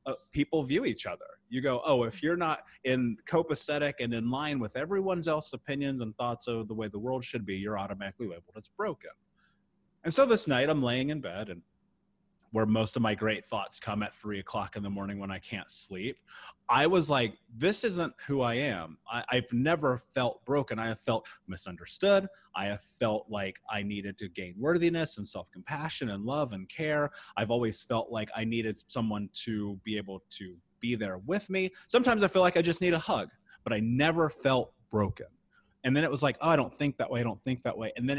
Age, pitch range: 30-49, 110-150 Hz